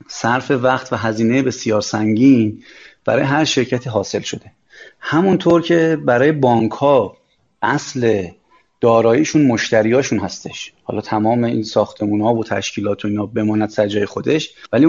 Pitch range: 110-135 Hz